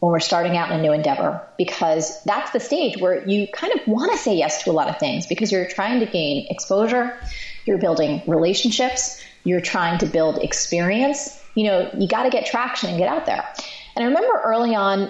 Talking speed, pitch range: 220 wpm, 175-225 Hz